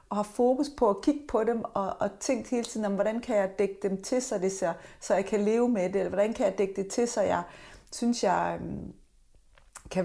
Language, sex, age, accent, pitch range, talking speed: Danish, female, 30-49, native, 205-250 Hz, 245 wpm